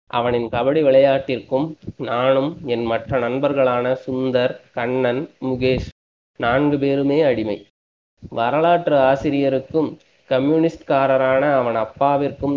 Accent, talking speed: native, 85 wpm